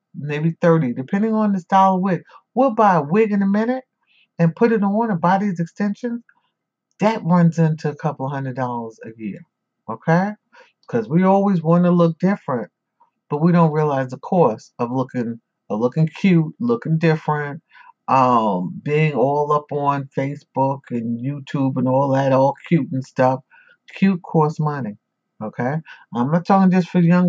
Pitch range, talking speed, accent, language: 140-195 Hz, 170 wpm, American, English